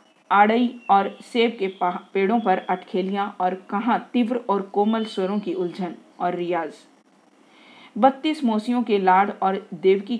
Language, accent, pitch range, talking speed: Hindi, native, 185-230 Hz, 135 wpm